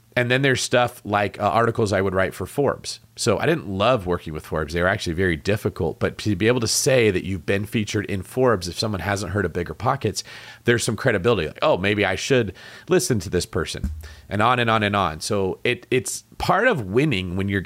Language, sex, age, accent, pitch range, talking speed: English, male, 30-49, American, 90-115 Hz, 235 wpm